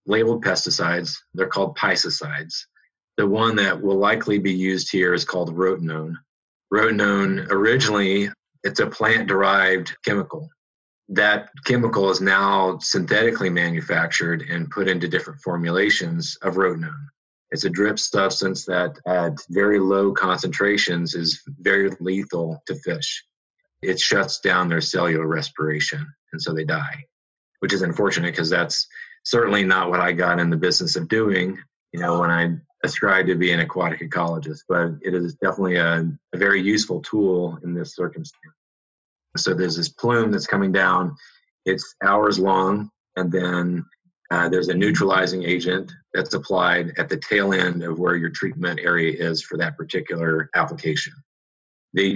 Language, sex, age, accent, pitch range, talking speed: English, male, 40-59, American, 85-105 Hz, 150 wpm